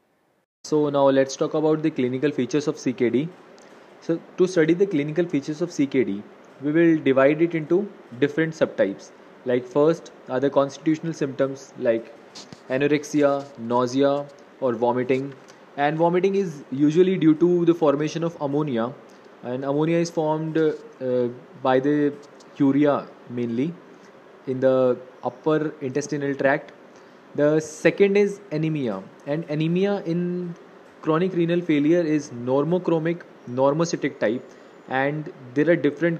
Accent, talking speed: Indian, 130 wpm